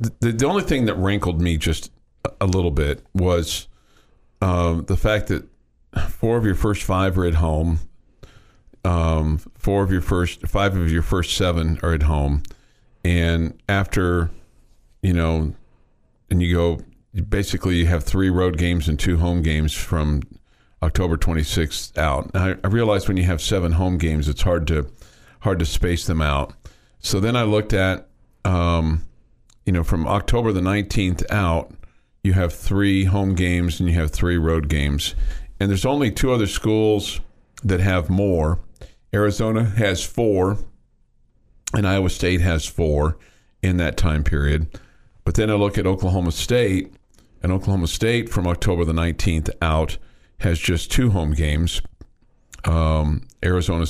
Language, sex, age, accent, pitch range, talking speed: English, male, 50-69, American, 80-100 Hz, 160 wpm